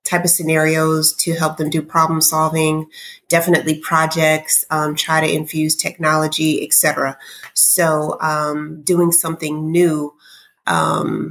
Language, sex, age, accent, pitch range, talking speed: English, female, 30-49, American, 155-170 Hz, 125 wpm